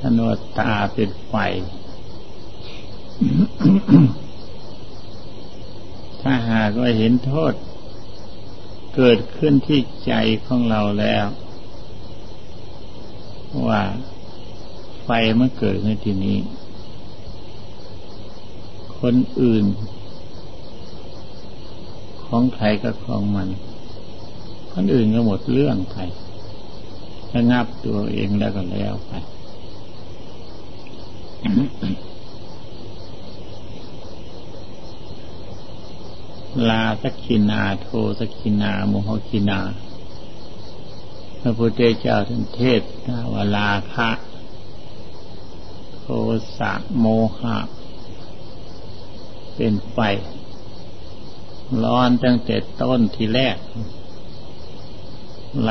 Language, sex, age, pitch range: Thai, male, 60-79, 100-115 Hz